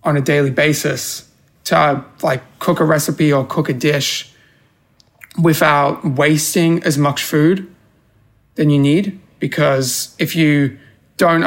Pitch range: 140-160 Hz